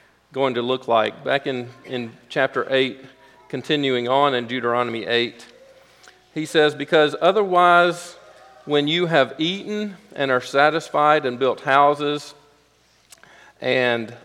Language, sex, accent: English, male, American